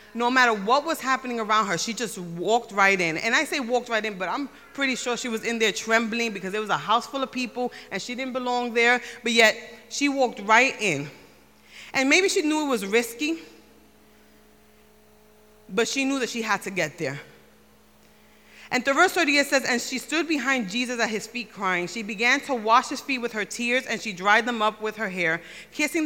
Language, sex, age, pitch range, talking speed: English, female, 30-49, 210-260 Hz, 215 wpm